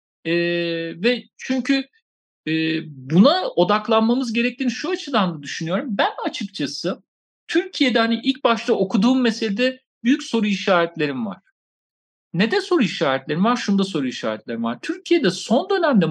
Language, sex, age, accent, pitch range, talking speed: Turkish, male, 50-69, native, 175-255 Hz, 130 wpm